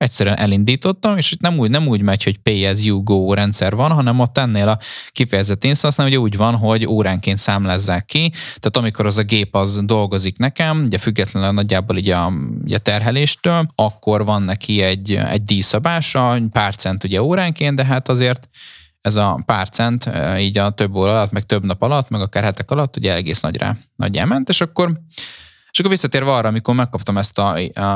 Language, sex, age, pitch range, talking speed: Hungarian, male, 20-39, 100-125 Hz, 185 wpm